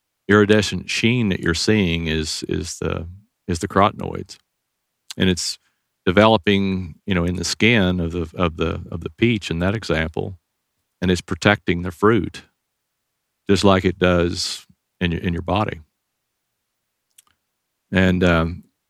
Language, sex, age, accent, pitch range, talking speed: English, male, 50-69, American, 85-100 Hz, 135 wpm